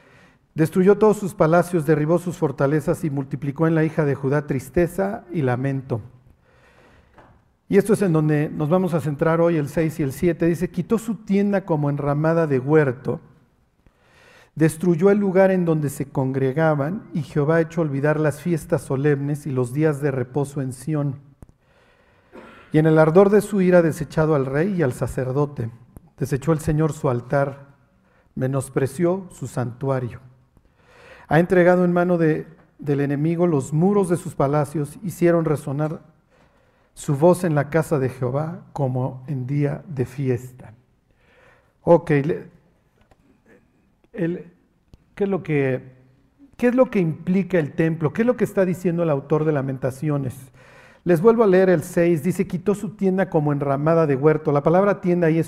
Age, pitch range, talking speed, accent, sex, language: 50-69, 140-175 Hz, 165 wpm, Mexican, male, Spanish